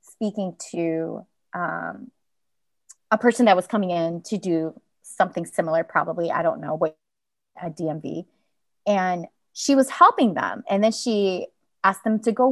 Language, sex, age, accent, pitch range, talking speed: English, female, 20-39, American, 170-230 Hz, 155 wpm